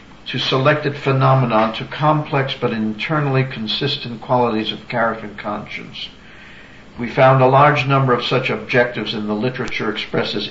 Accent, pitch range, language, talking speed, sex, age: American, 115-145 Hz, English, 145 wpm, male, 60-79